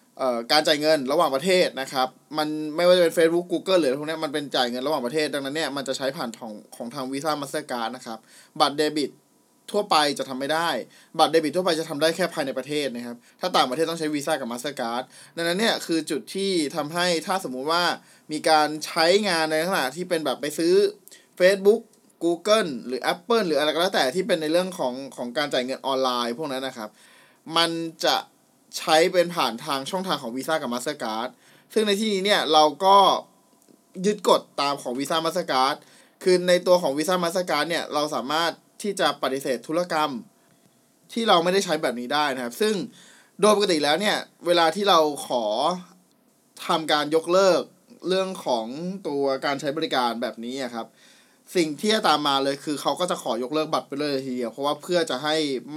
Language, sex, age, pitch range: Thai, male, 20-39, 135-180 Hz